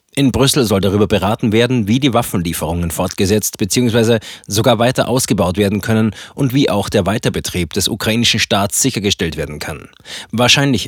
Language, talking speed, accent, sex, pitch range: German, 155 wpm, German, male, 100-120 Hz